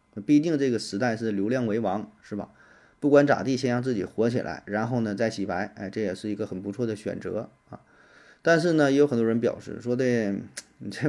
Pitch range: 100-125 Hz